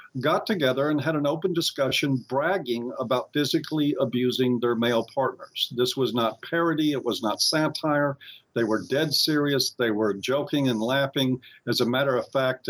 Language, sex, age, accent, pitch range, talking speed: English, male, 50-69, American, 125-160 Hz, 170 wpm